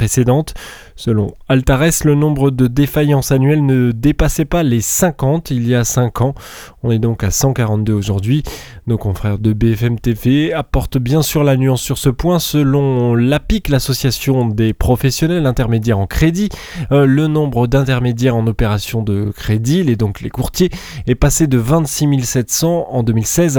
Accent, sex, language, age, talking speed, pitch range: French, male, French, 20-39, 160 wpm, 120-155 Hz